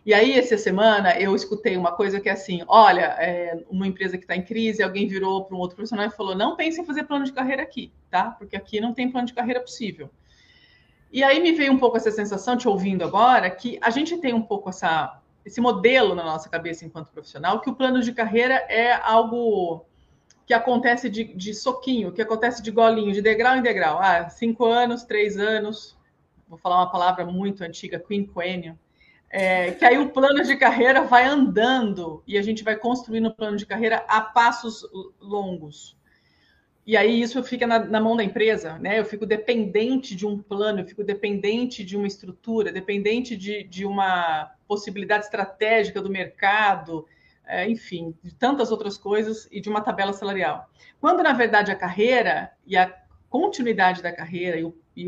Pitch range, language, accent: 190-235 Hz, Portuguese, Brazilian